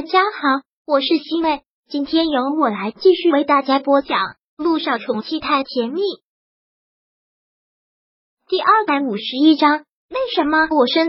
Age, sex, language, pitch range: 20-39, male, Chinese, 265-325 Hz